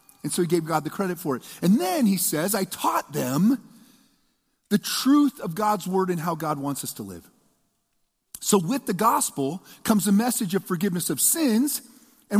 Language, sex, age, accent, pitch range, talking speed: English, male, 40-59, American, 195-255 Hz, 195 wpm